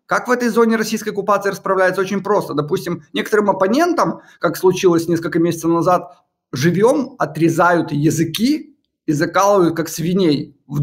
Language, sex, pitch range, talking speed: Ukrainian, male, 165-220 Hz, 140 wpm